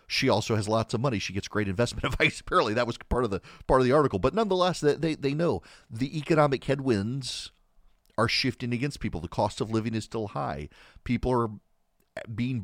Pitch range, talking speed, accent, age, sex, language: 100-130 Hz, 210 wpm, American, 40-59, male, English